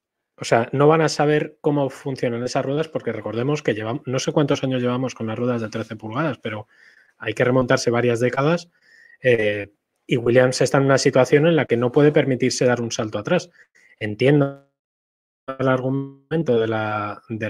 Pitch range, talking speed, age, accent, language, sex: 115-135 Hz, 185 wpm, 20-39, Spanish, Spanish, male